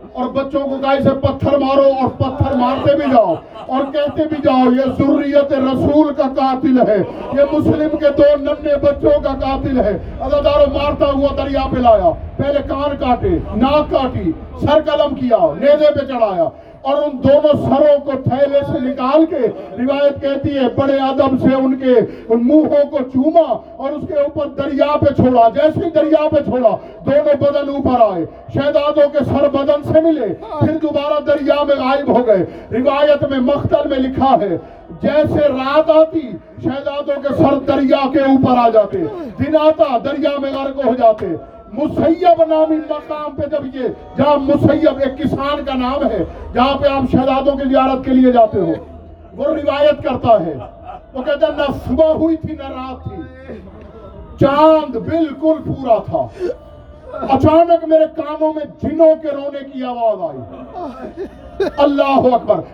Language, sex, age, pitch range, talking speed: Urdu, male, 50-69, 275-305 Hz, 110 wpm